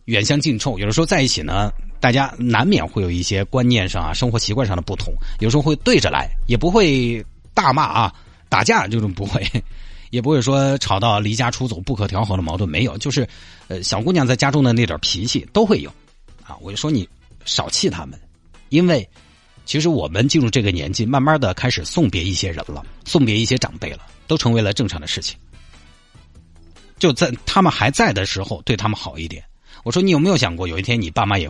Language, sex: Chinese, male